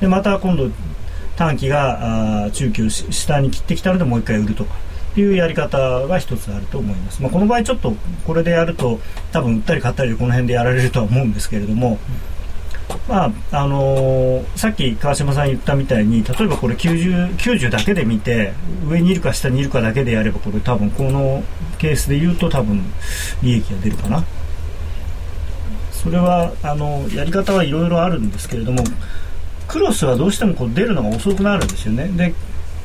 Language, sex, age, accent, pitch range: Japanese, male, 40-59, native, 95-145 Hz